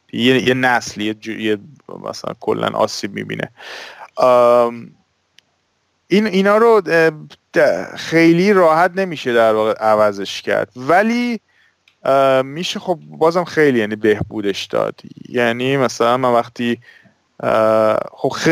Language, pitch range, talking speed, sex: Persian, 115-150 Hz, 100 wpm, male